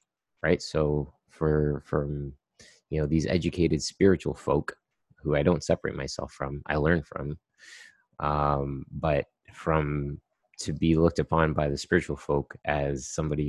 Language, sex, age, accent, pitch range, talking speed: English, male, 30-49, American, 70-90 Hz, 140 wpm